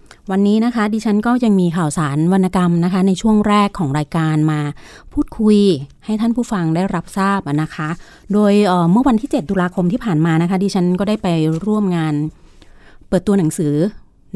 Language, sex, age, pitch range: Thai, female, 30-49, 155-195 Hz